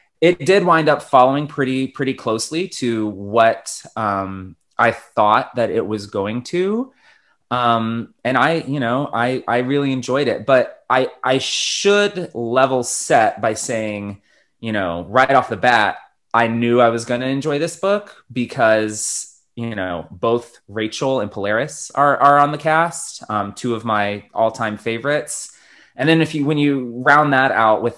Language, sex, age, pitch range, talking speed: English, male, 20-39, 110-140 Hz, 170 wpm